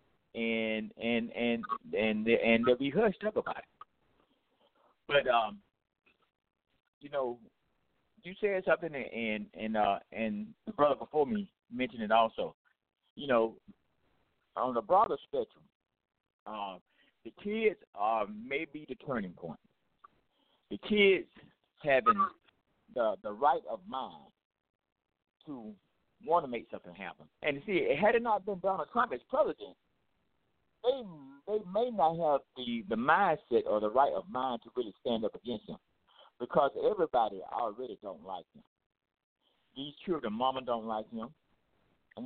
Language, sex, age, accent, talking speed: English, male, 50-69, American, 145 wpm